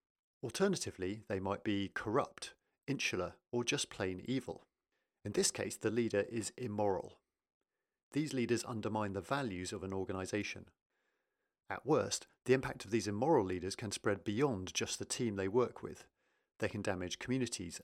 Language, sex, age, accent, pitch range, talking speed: English, male, 50-69, British, 95-130 Hz, 155 wpm